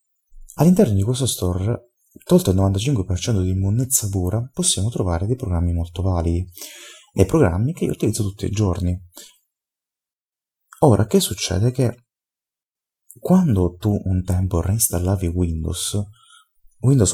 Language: Italian